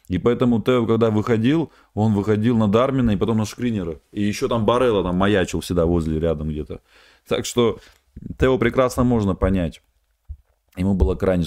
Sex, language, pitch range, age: male, Russian, 90-120 Hz, 30-49